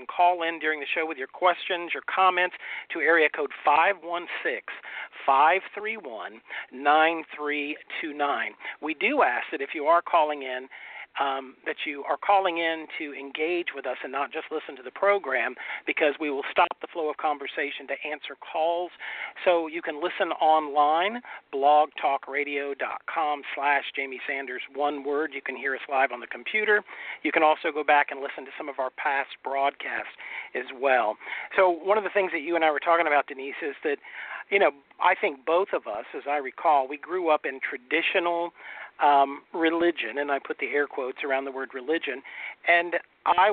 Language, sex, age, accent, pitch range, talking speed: English, male, 50-69, American, 140-170 Hz, 180 wpm